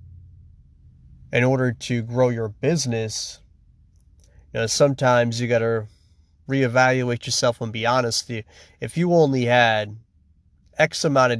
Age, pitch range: 30-49, 105-130 Hz